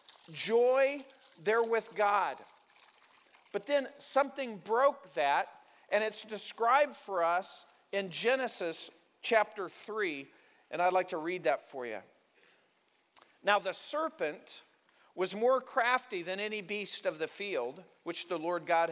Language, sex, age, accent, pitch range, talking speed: English, male, 50-69, American, 185-260 Hz, 135 wpm